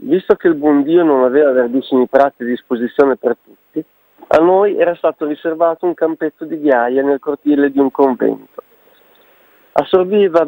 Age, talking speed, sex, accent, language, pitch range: 40-59, 160 wpm, male, native, Italian, 130-170 Hz